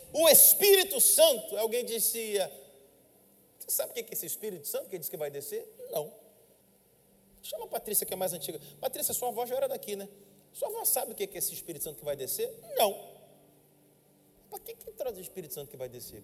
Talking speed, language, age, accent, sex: 205 wpm, Portuguese, 40-59, Brazilian, male